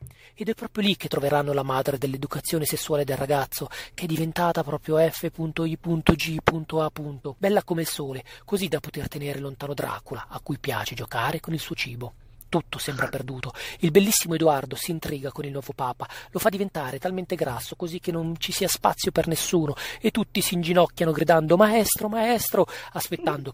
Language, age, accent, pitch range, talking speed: Italian, 30-49, native, 140-175 Hz, 175 wpm